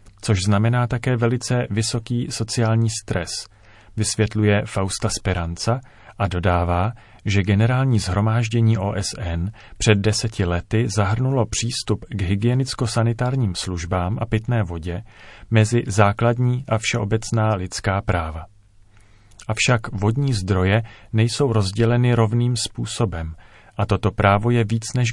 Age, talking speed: 40-59, 110 wpm